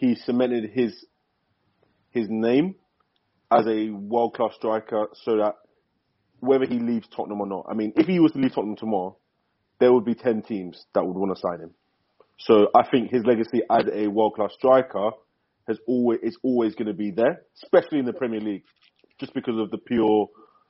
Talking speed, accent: 185 wpm, British